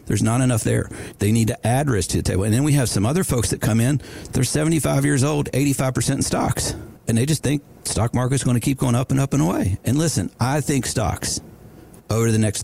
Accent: American